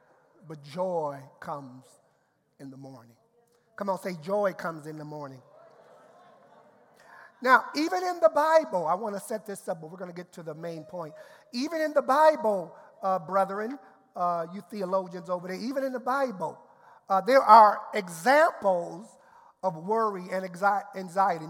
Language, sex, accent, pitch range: English, male, American, 175-220 Hz